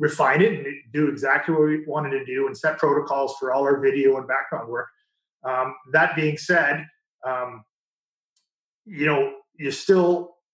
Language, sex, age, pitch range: English, male, 30-49, 140-190 Hz